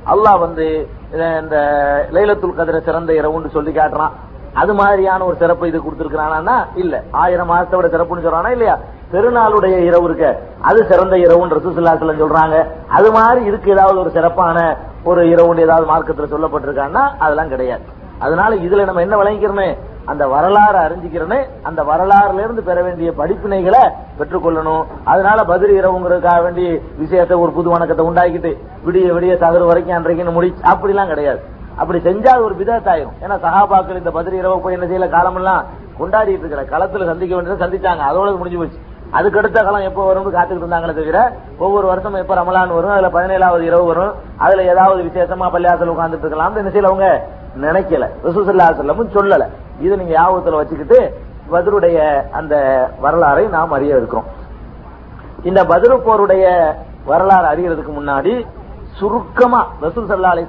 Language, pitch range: Tamil, 165-195 Hz